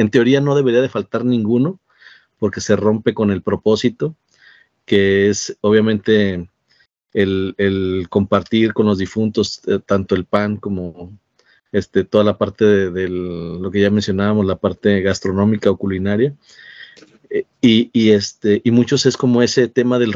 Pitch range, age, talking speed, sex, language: 100-115 Hz, 40-59, 160 wpm, male, Spanish